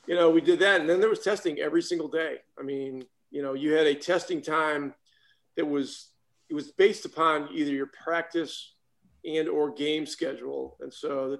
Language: English